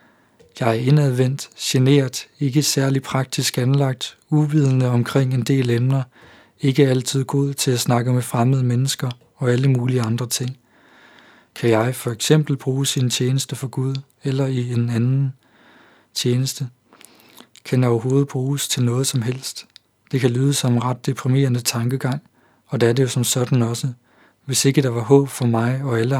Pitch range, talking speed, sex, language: 120-140 Hz, 170 wpm, male, Danish